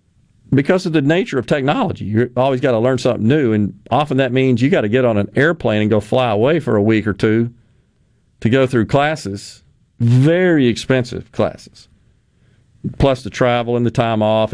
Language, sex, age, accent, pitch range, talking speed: English, male, 40-59, American, 115-145 Hz, 195 wpm